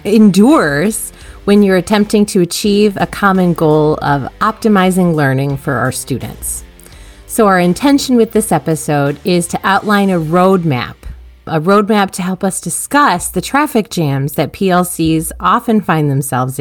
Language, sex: English, female